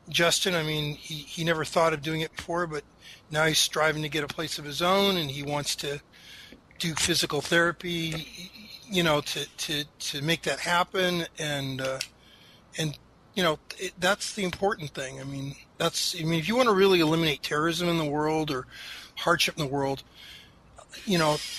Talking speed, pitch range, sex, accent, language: 190 wpm, 145-170 Hz, male, American, English